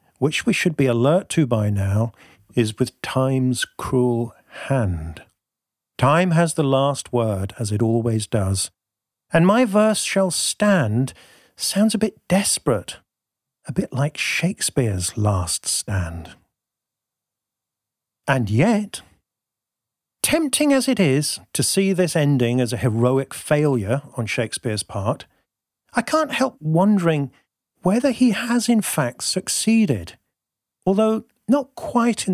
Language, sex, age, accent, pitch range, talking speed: English, male, 50-69, British, 115-185 Hz, 125 wpm